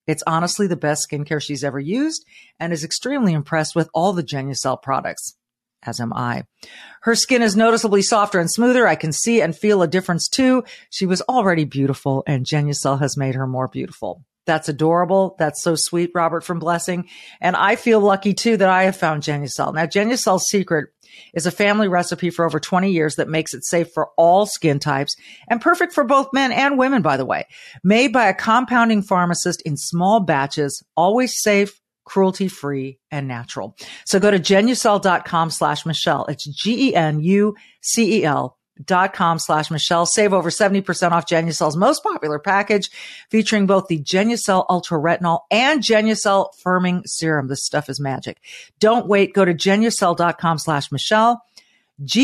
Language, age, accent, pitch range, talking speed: English, 50-69, American, 155-210 Hz, 175 wpm